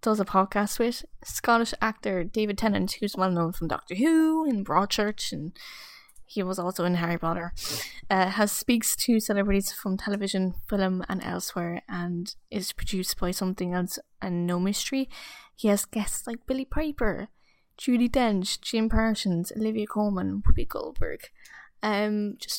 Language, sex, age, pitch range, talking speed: English, female, 10-29, 195-235 Hz, 155 wpm